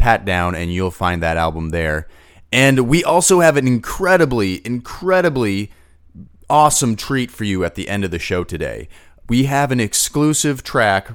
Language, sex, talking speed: English, male, 165 wpm